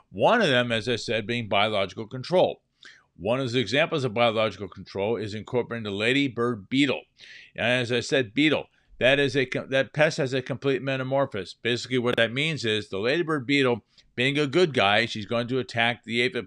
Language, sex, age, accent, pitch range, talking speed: English, male, 50-69, American, 110-135 Hz, 195 wpm